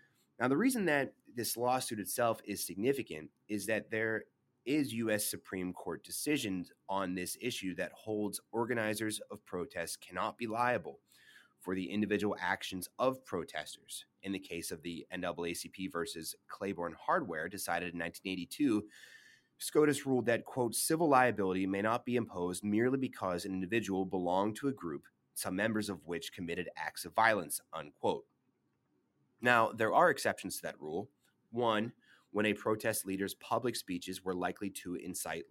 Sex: male